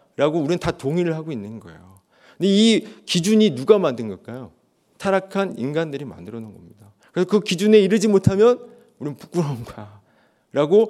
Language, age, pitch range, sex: Korean, 40-59, 120-190 Hz, male